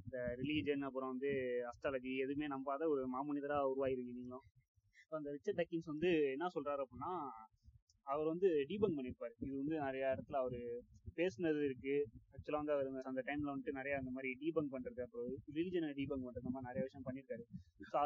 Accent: native